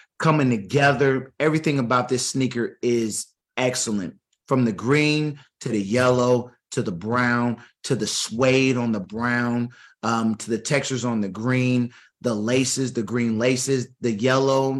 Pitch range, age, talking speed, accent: 115-145 Hz, 30-49, 150 wpm, American